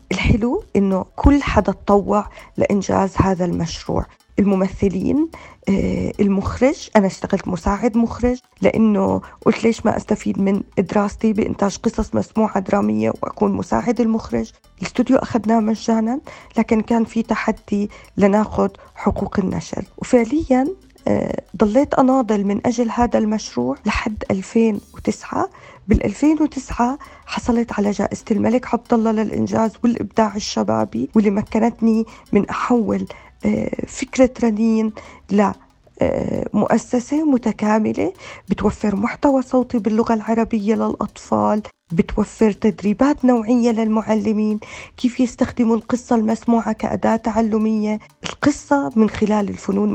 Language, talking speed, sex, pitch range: Arabic, 105 wpm, female, 205-240 Hz